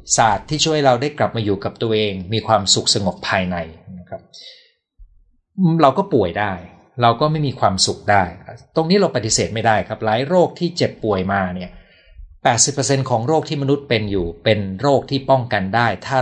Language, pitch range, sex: Thai, 95-135 Hz, male